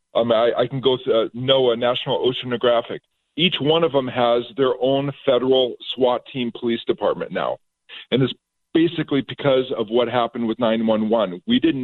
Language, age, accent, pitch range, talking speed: English, 50-69, American, 120-140 Hz, 170 wpm